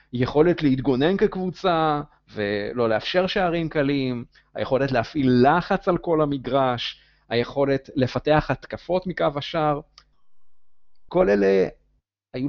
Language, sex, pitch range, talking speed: Hebrew, male, 115-170 Hz, 100 wpm